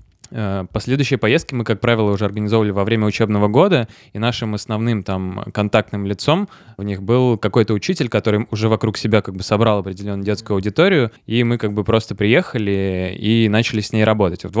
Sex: male